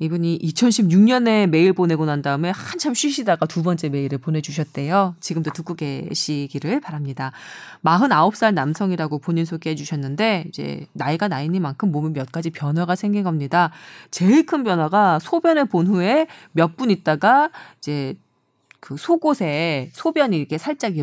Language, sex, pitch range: Korean, female, 155-210 Hz